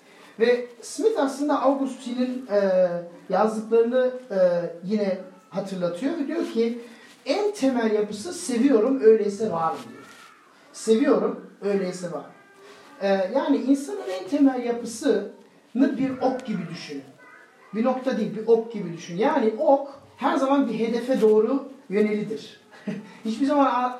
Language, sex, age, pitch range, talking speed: Turkish, male, 40-59, 200-260 Hz, 115 wpm